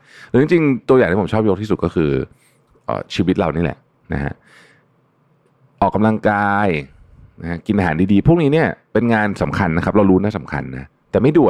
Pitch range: 80-120 Hz